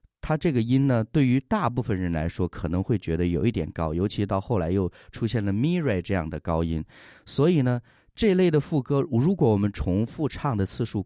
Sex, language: male, Chinese